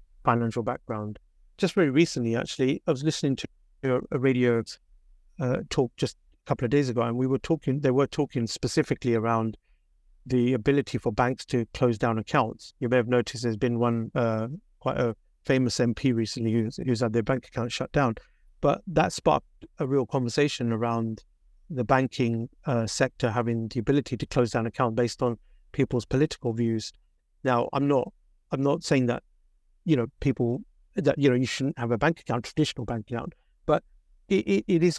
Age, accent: 50-69, British